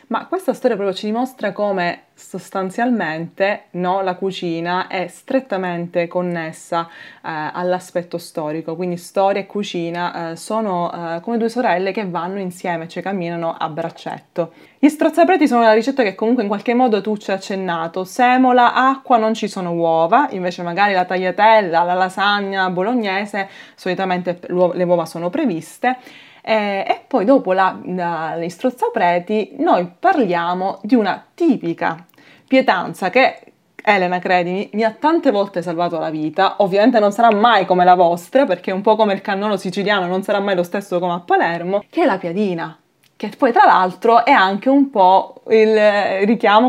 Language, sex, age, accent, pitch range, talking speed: Italian, female, 20-39, native, 175-225 Hz, 160 wpm